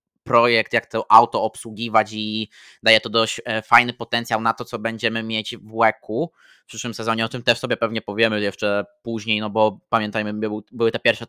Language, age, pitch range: Polish, 20-39, 110-130 Hz